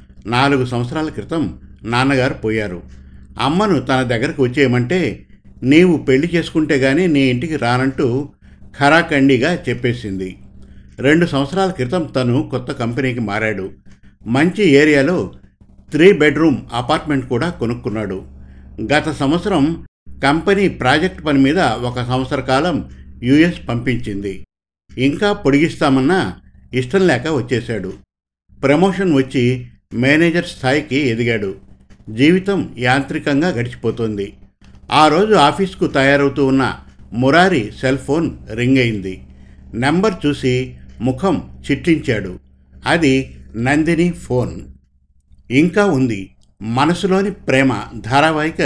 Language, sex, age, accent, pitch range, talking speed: Telugu, male, 50-69, native, 110-150 Hz, 95 wpm